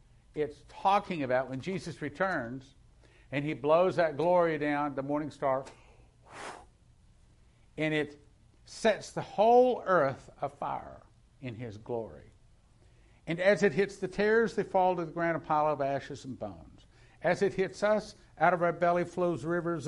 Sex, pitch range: male, 125-185 Hz